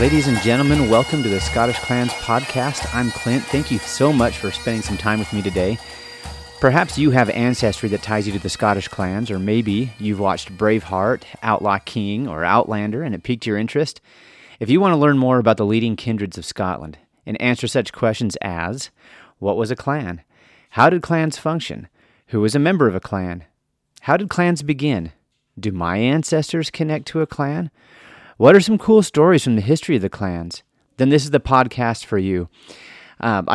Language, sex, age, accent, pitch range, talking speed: English, male, 30-49, American, 100-135 Hz, 195 wpm